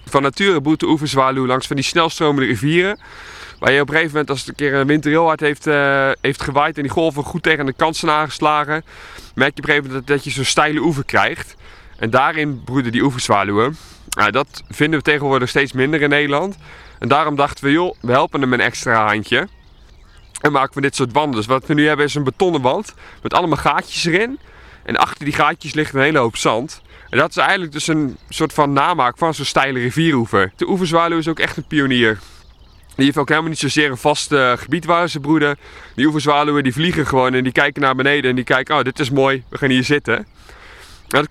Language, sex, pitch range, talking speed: Dutch, male, 130-155 Hz, 230 wpm